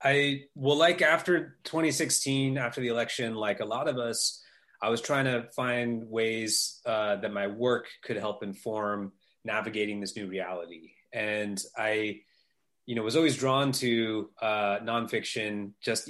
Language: English